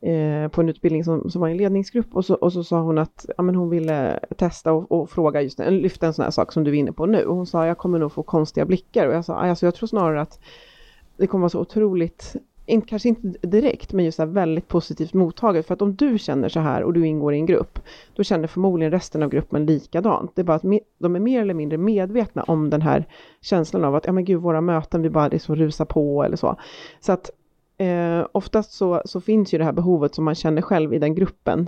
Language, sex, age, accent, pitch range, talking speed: Swedish, female, 30-49, native, 155-190 Hz, 260 wpm